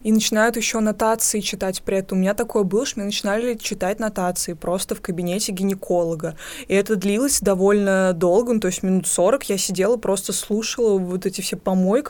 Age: 20-39